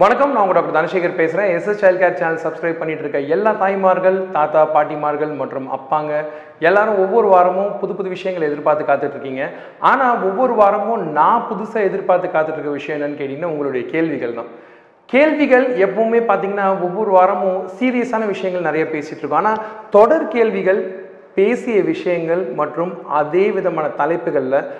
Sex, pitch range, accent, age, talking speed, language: male, 155-215 Hz, native, 40-59, 145 wpm, Tamil